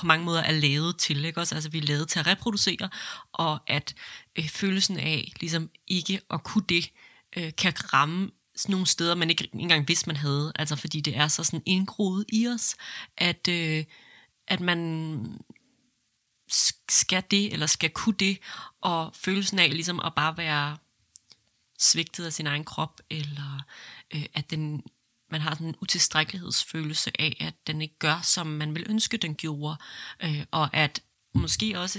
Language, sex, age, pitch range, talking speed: Danish, female, 30-49, 155-180 Hz, 170 wpm